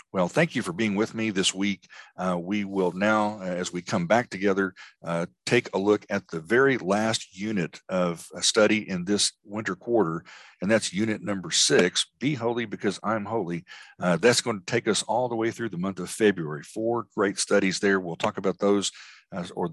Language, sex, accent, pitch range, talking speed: English, male, American, 90-105 Hz, 205 wpm